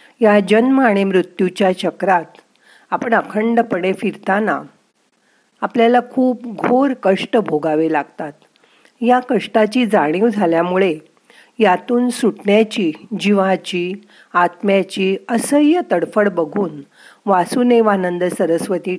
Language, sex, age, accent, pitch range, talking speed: Marathi, female, 50-69, native, 175-235 Hz, 85 wpm